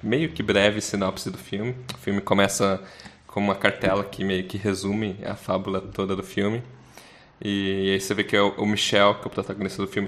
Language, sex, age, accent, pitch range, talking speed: Portuguese, male, 10-29, Brazilian, 95-110 Hz, 200 wpm